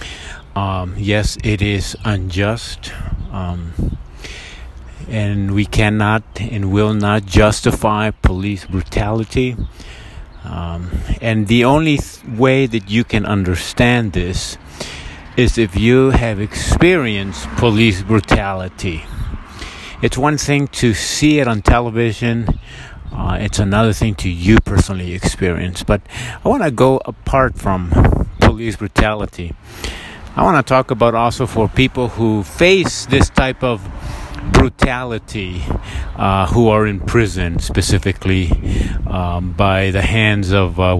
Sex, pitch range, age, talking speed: male, 90-115 Hz, 50-69, 120 wpm